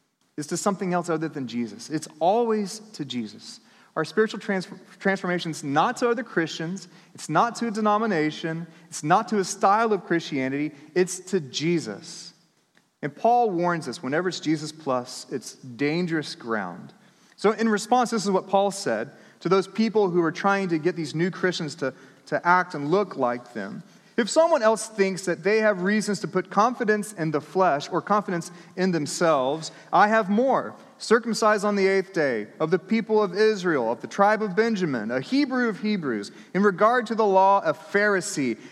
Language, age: English, 30-49